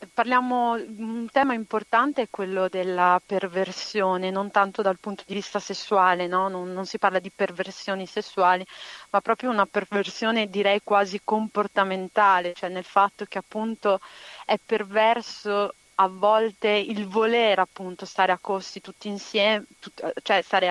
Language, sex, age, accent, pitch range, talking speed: Italian, female, 40-59, native, 185-210 Hz, 145 wpm